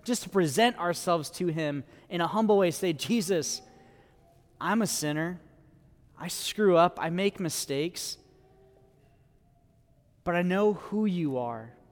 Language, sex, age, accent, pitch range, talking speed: English, male, 30-49, American, 140-180 Hz, 135 wpm